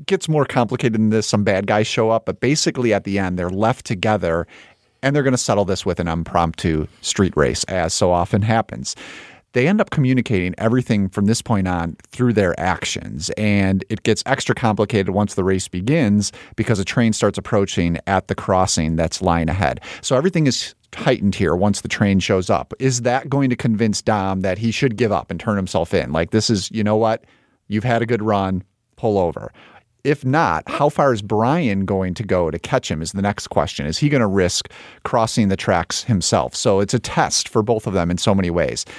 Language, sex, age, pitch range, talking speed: English, male, 40-59, 95-125 Hz, 215 wpm